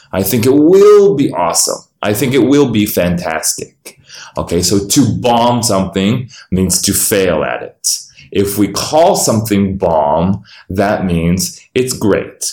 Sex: male